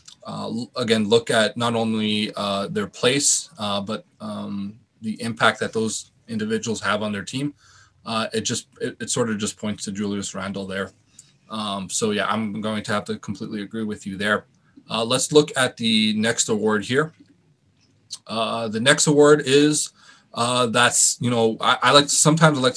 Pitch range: 110-145 Hz